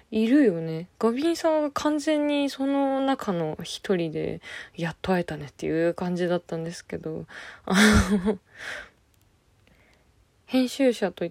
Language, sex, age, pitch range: Japanese, female, 20-39, 180-255 Hz